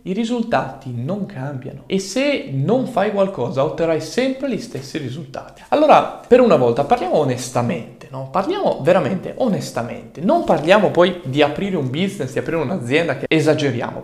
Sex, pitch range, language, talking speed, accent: male, 130-175 Hz, Italian, 150 wpm, native